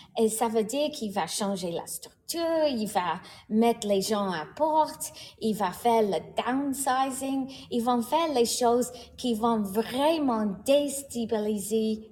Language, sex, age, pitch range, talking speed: English, female, 30-49, 200-250 Hz, 150 wpm